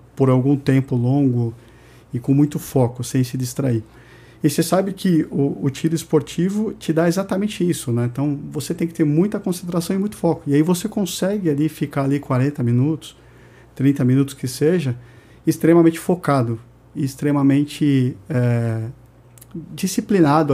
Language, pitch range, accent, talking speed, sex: Portuguese, 130-170 Hz, Brazilian, 150 wpm, male